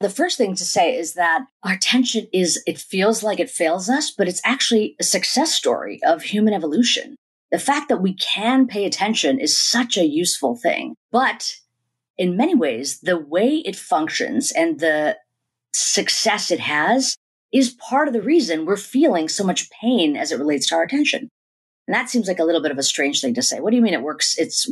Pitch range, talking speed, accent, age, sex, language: 170-260 Hz, 210 wpm, American, 40-59, female, English